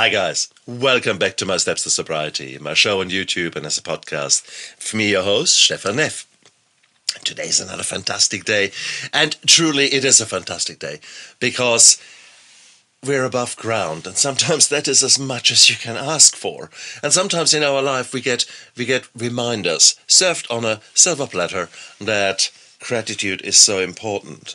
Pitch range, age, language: 95-125 Hz, 50-69, English